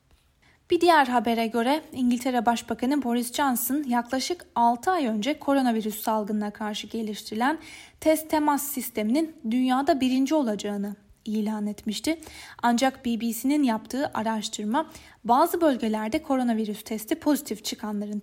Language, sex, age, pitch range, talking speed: Turkish, female, 10-29, 220-285 Hz, 110 wpm